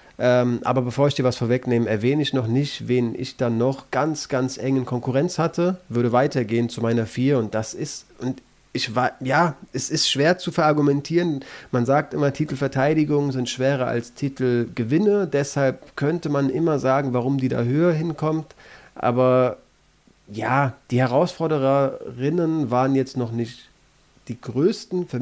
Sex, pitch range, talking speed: male, 125-155 Hz, 155 wpm